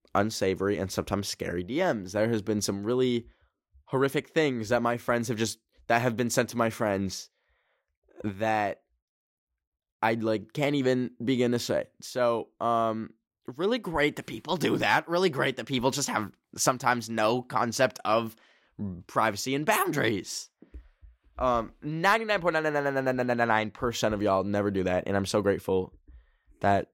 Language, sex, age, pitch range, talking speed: English, male, 10-29, 100-135 Hz, 145 wpm